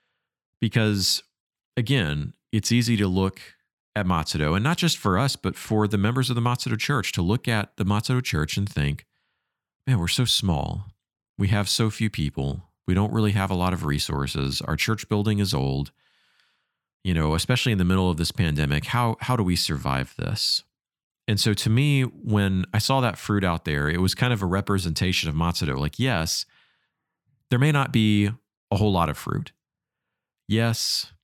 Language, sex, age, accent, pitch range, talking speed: English, male, 40-59, American, 90-115 Hz, 185 wpm